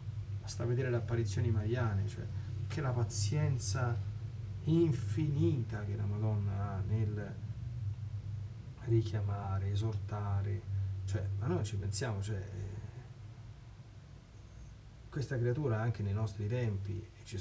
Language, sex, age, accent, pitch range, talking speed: Italian, male, 30-49, native, 105-125 Hz, 105 wpm